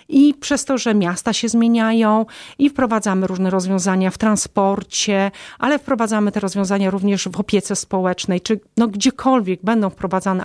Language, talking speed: Polish, 150 wpm